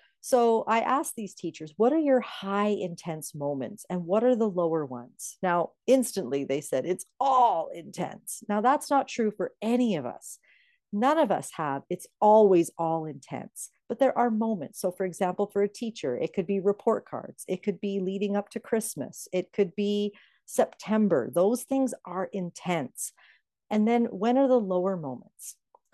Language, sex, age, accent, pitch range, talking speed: English, female, 50-69, American, 175-235 Hz, 180 wpm